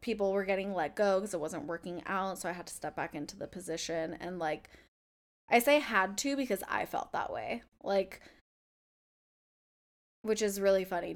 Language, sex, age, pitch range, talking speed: English, female, 10-29, 170-200 Hz, 190 wpm